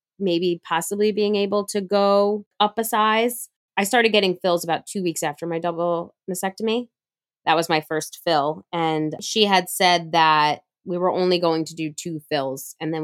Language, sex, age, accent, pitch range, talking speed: English, female, 20-39, American, 150-195 Hz, 185 wpm